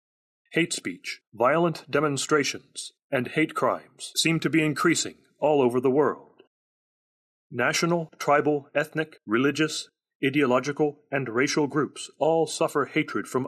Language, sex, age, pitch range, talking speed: English, male, 40-59, 130-155 Hz, 120 wpm